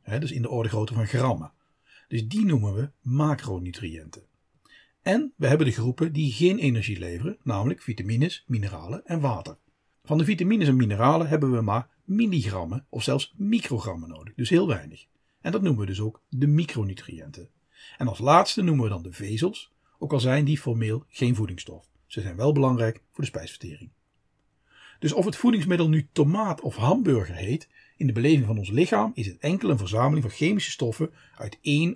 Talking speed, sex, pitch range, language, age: 180 wpm, male, 115-155 Hz, Dutch, 50-69